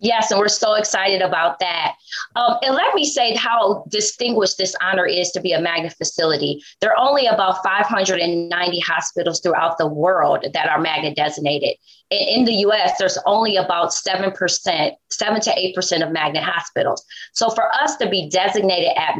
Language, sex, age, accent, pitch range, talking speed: English, female, 30-49, American, 165-210 Hz, 180 wpm